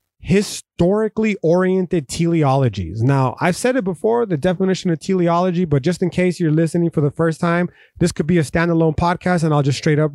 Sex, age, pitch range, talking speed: male, 30-49, 145-170 Hz, 195 wpm